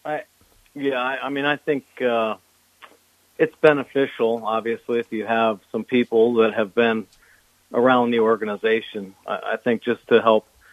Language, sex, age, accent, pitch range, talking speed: English, male, 50-69, American, 110-130 Hz, 155 wpm